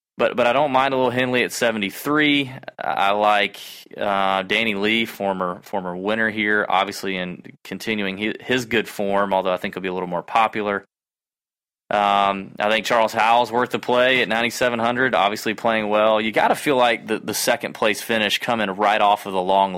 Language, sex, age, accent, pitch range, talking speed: English, male, 20-39, American, 95-110 Hz, 190 wpm